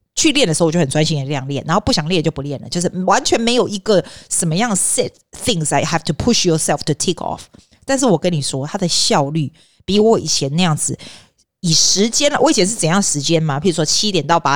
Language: Chinese